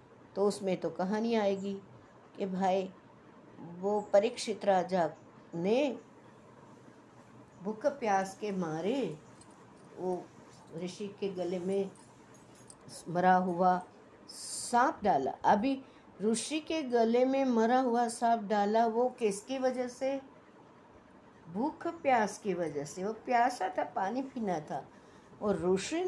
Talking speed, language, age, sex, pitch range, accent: 115 wpm, Hindi, 60-79, female, 180-245 Hz, native